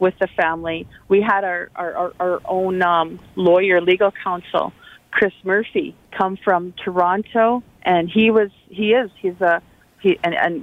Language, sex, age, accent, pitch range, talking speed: English, female, 40-59, American, 165-190 Hz, 150 wpm